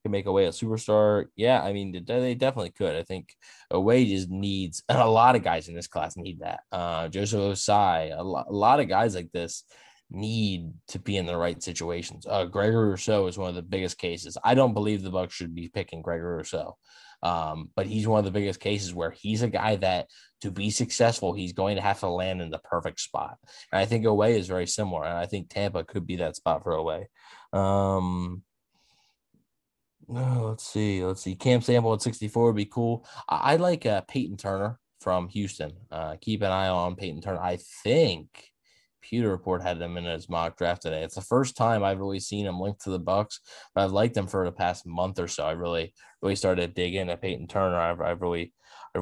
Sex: male